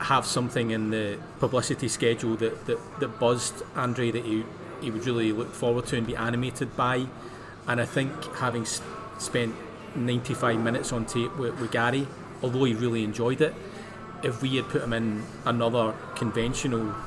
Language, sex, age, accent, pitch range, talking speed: English, male, 30-49, British, 115-145 Hz, 165 wpm